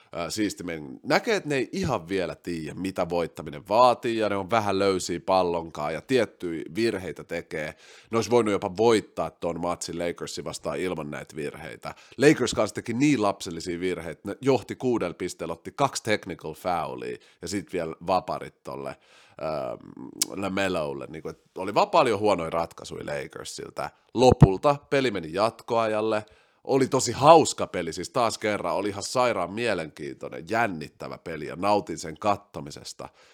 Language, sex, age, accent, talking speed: Finnish, male, 30-49, native, 140 wpm